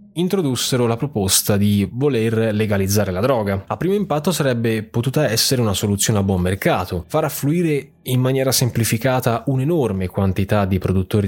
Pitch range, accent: 100-145 Hz, native